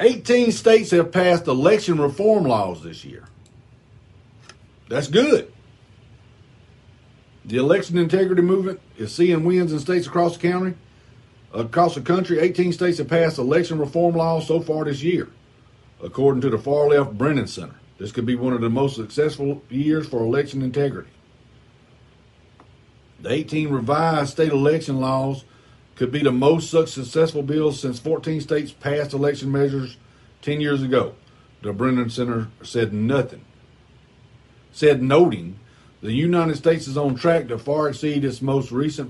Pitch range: 120-150 Hz